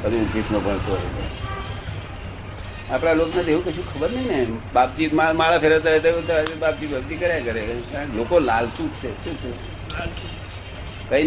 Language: Gujarati